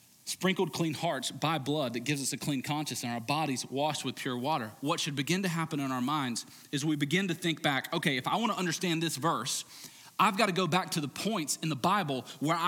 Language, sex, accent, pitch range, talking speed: English, male, American, 130-165 Hz, 235 wpm